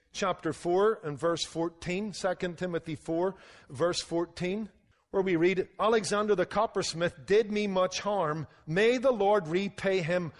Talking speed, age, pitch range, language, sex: 145 wpm, 50-69, 145-185 Hz, English, male